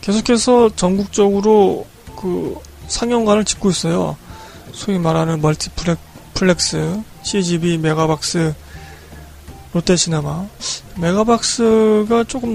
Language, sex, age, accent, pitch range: Korean, male, 20-39, native, 155-195 Hz